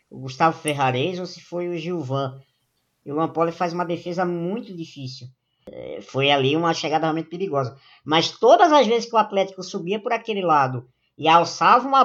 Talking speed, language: 180 wpm, Portuguese